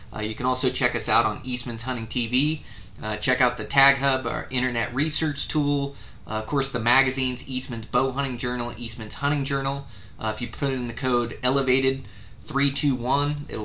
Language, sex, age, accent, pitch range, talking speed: English, male, 20-39, American, 105-130 Hz, 185 wpm